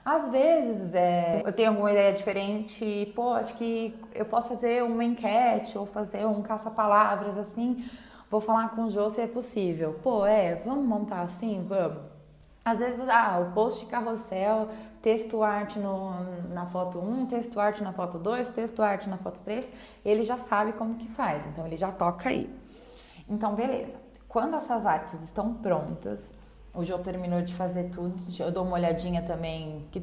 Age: 20-39